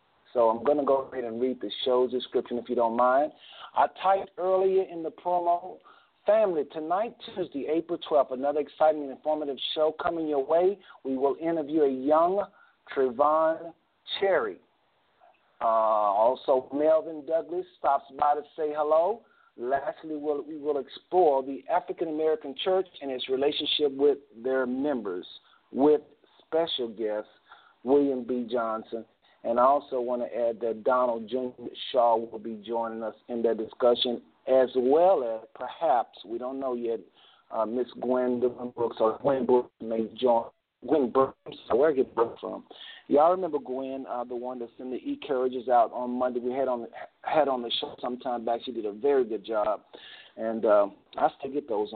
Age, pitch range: 50-69, 120-155 Hz